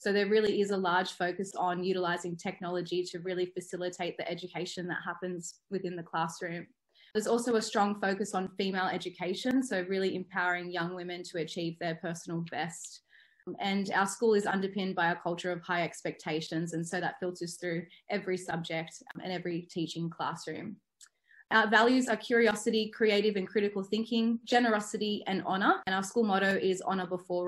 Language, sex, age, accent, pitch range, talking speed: English, female, 20-39, Australian, 180-215 Hz, 170 wpm